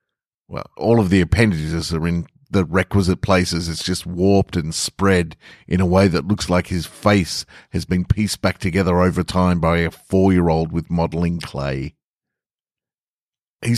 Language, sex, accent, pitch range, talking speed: English, male, Australian, 90-120 Hz, 160 wpm